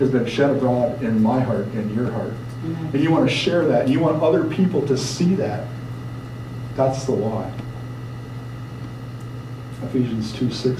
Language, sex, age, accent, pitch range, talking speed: English, male, 40-59, American, 125-145 Hz, 165 wpm